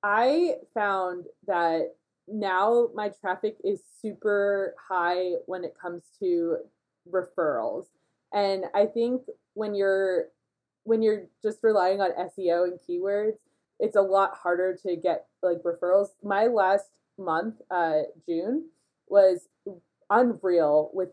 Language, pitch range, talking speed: English, 170-215 Hz, 120 wpm